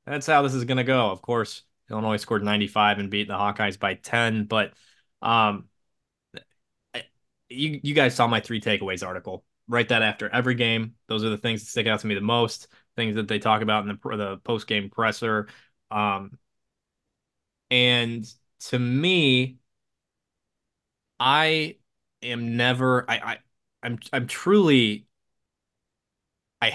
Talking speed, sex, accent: 155 wpm, male, American